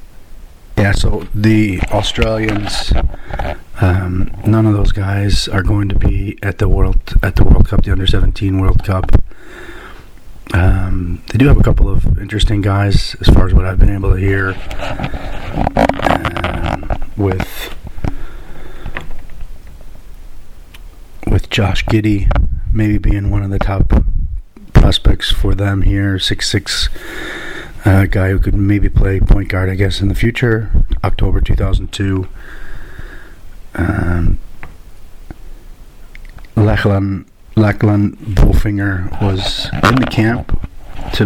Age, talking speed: 40-59, 120 wpm